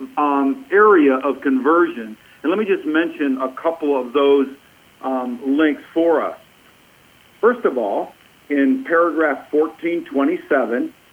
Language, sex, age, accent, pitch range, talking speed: English, male, 50-69, American, 140-195 Hz, 125 wpm